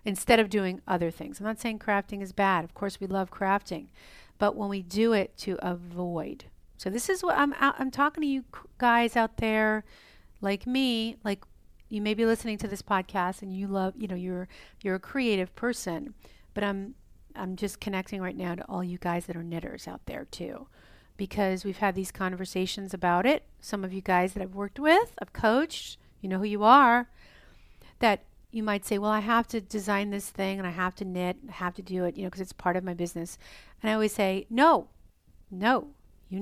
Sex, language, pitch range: female, English, 185-235 Hz